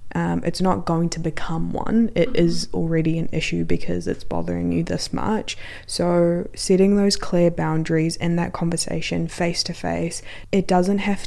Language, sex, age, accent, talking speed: English, female, 20-39, Australian, 170 wpm